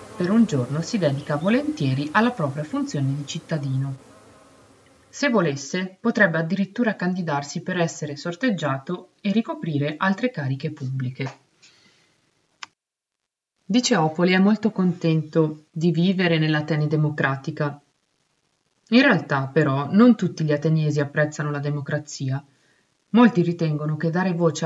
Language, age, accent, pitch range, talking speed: Italian, 30-49, native, 145-185 Hz, 115 wpm